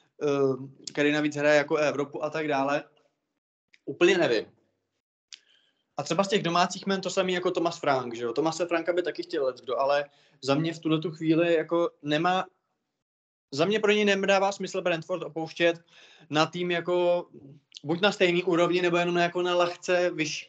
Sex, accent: male, native